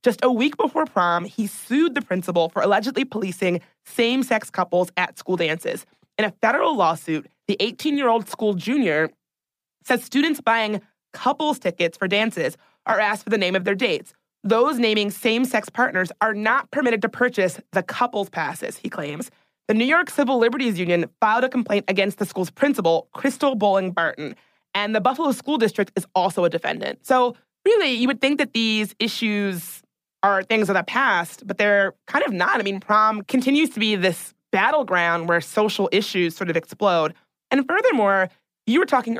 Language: English